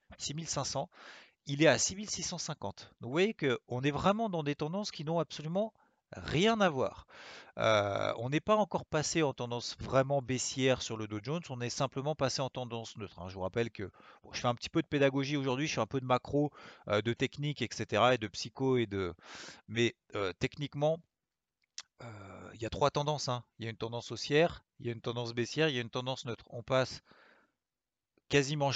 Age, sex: 40-59, male